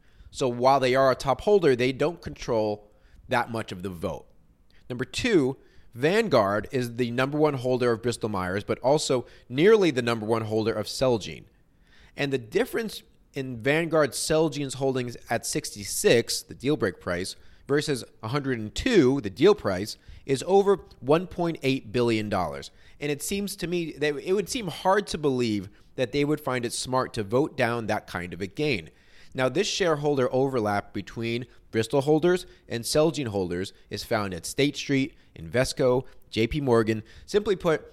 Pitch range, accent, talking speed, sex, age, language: 110-150 Hz, American, 165 wpm, male, 30-49, English